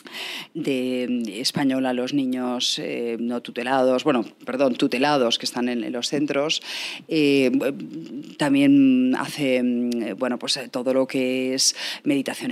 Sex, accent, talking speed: female, Spanish, 130 wpm